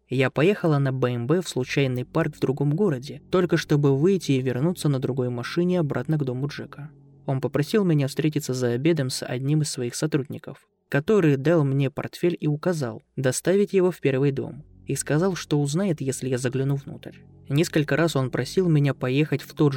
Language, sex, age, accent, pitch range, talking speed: Russian, male, 20-39, native, 135-170 Hz, 180 wpm